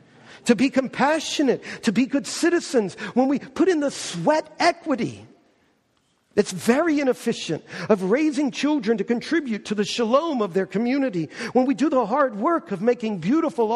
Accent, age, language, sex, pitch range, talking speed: American, 50-69, English, male, 215-295 Hz, 160 wpm